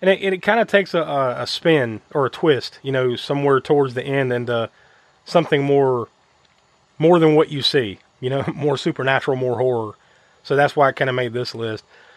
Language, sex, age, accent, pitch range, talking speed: English, male, 30-49, American, 130-175 Hz, 200 wpm